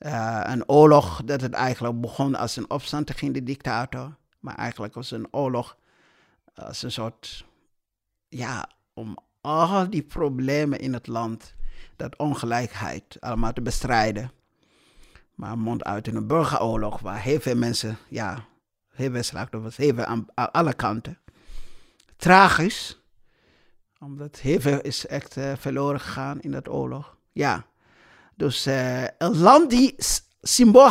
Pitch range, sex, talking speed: 120-160 Hz, male, 140 wpm